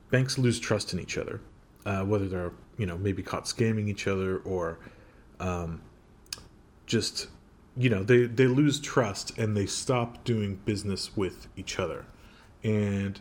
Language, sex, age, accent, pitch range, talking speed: English, male, 30-49, American, 95-120 Hz, 155 wpm